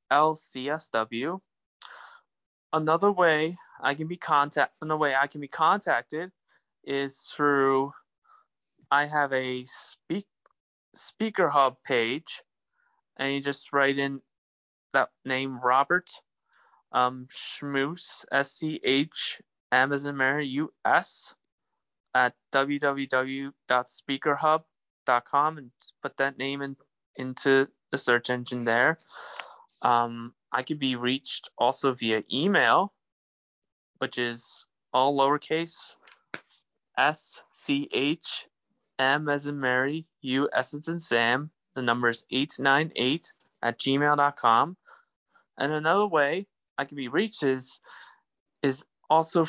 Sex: male